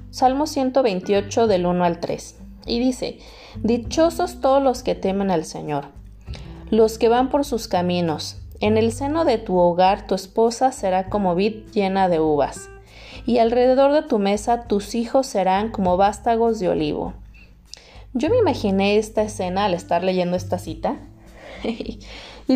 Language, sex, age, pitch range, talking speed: Spanish, female, 20-39, 175-235 Hz, 155 wpm